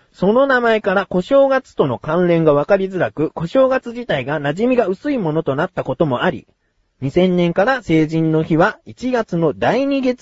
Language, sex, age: Japanese, male, 40-59